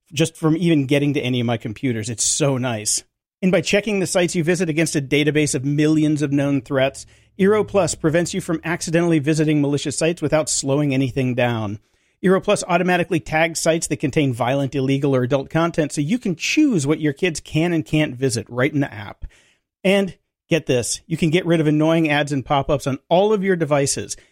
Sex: male